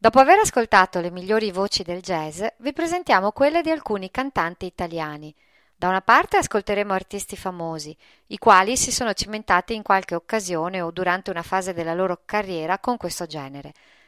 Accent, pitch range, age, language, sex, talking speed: native, 180-250 Hz, 40-59, Italian, female, 165 wpm